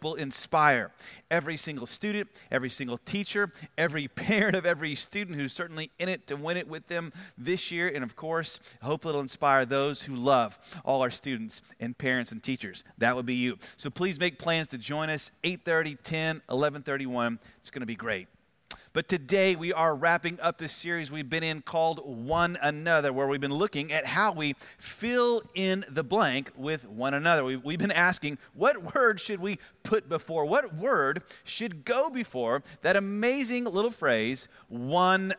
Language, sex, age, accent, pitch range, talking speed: English, male, 30-49, American, 145-200 Hz, 180 wpm